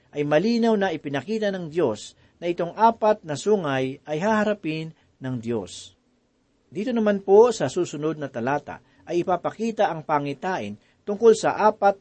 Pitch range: 140-200 Hz